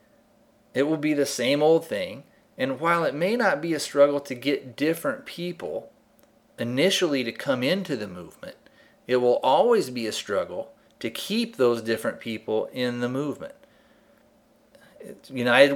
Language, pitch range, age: English, 125-185 Hz, 40-59